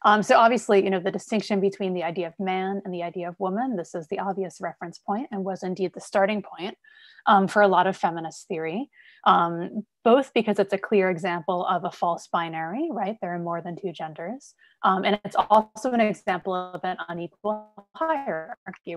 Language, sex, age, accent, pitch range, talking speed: English, female, 30-49, American, 180-230 Hz, 200 wpm